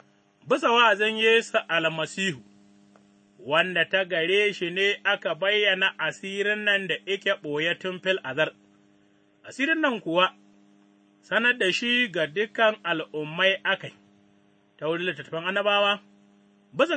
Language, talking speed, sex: English, 95 wpm, male